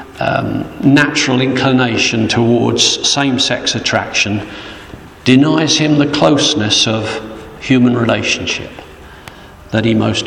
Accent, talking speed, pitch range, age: British, 95 wpm, 100-145 Hz, 50-69